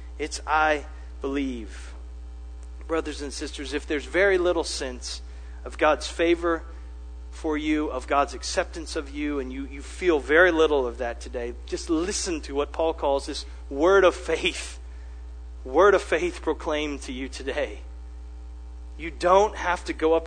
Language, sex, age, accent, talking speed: English, male, 40-59, American, 155 wpm